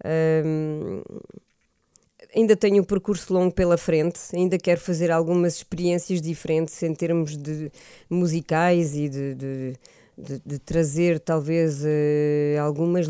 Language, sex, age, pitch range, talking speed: Portuguese, female, 20-39, 160-190 Hz, 110 wpm